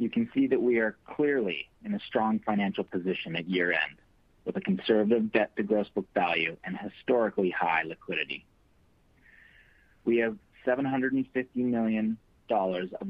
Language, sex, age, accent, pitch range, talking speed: English, male, 40-59, American, 100-125 Hz, 145 wpm